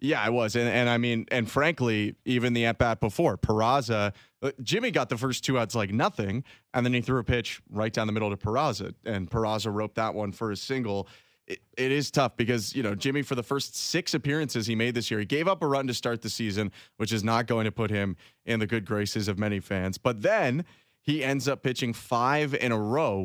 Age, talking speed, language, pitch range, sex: 30-49, 240 wpm, English, 110-135 Hz, male